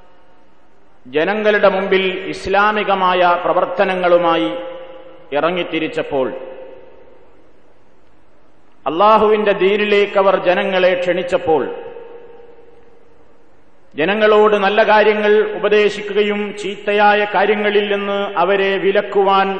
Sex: male